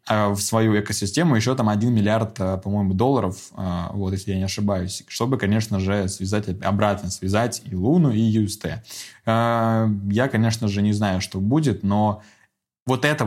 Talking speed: 155 wpm